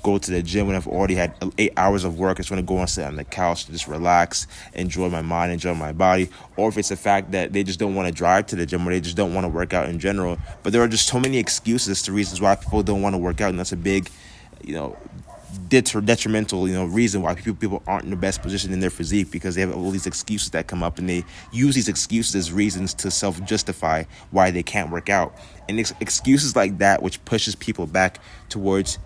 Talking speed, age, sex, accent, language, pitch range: 265 wpm, 20-39, male, American, English, 90-105 Hz